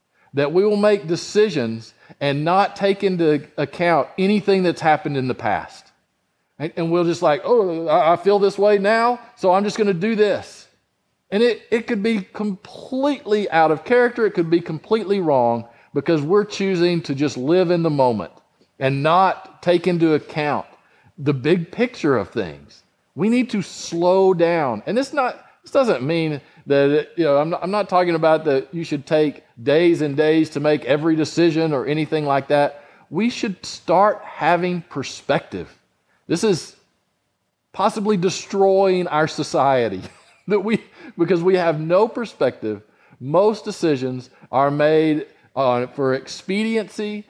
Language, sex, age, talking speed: English, male, 50-69, 160 wpm